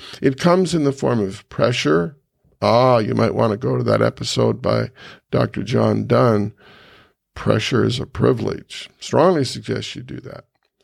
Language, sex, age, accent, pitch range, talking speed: English, male, 50-69, American, 115-140 Hz, 160 wpm